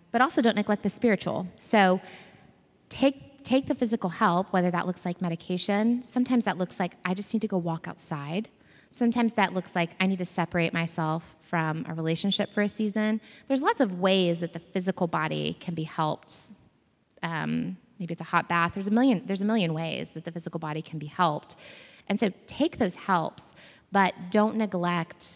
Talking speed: 195 wpm